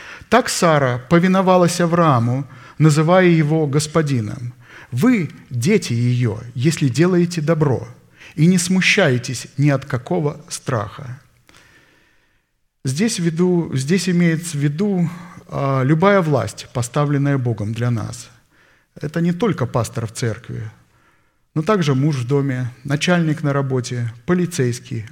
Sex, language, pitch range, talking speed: male, Russian, 120-165 Hz, 110 wpm